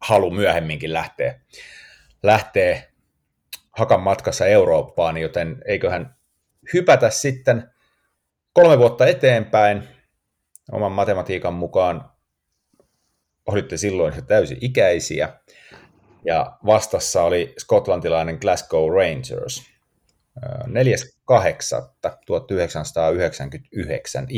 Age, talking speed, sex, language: 30-49, 65 wpm, male, Finnish